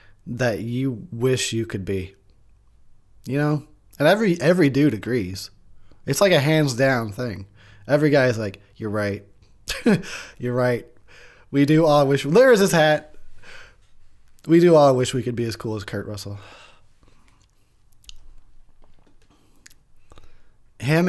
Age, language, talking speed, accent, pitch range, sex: 20-39, English, 135 wpm, American, 100-125 Hz, male